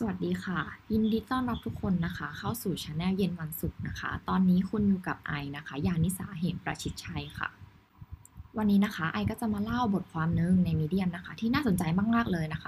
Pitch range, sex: 160-215 Hz, female